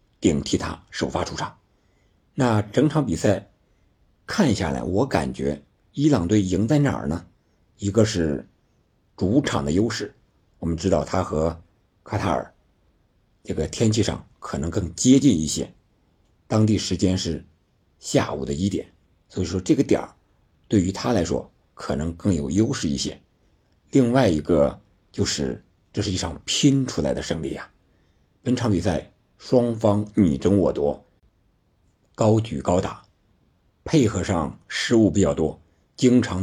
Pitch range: 85-110 Hz